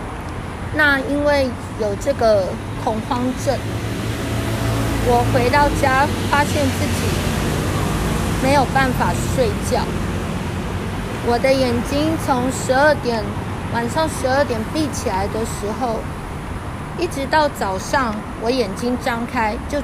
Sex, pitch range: female, 210-270 Hz